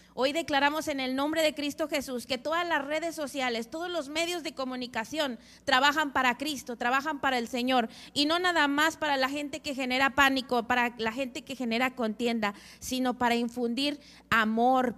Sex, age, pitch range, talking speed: female, 30-49, 245-305 Hz, 180 wpm